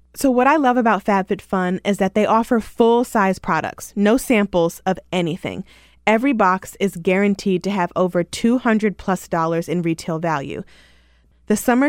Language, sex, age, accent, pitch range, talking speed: English, female, 20-39, American, 175-225 Hz, 145 wpm